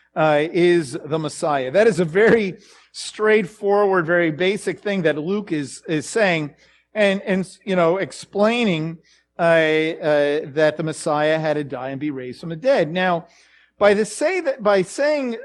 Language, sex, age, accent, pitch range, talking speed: English, male, 50-69, American, 170-260 Hz, 165 wpm